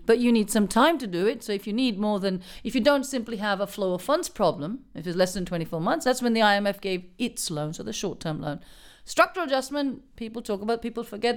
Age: 50-69